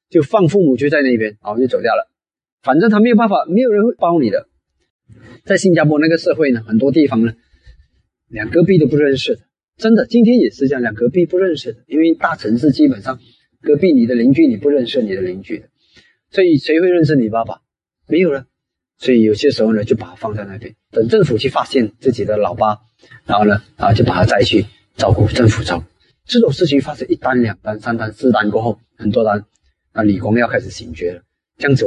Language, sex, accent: Chinese, male, native